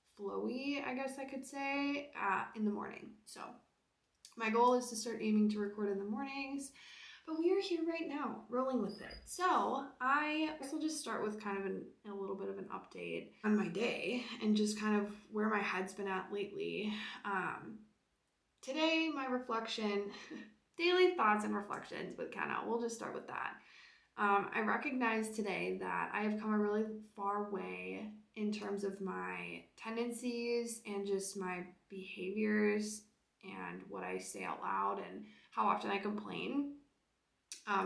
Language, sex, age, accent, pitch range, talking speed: English, female, 20-39, American, 195-240 Hz, 170 wpm